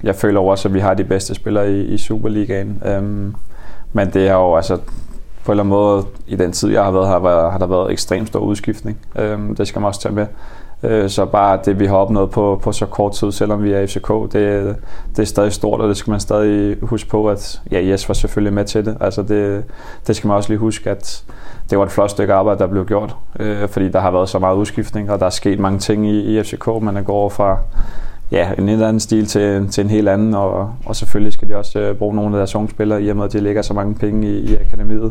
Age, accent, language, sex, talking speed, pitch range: 20-39, native, Danish, male, 255 wpm, 100-105 Hz